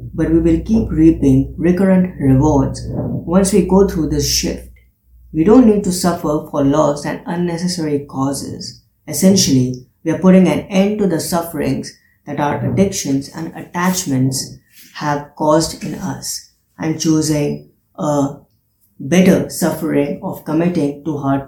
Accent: Indian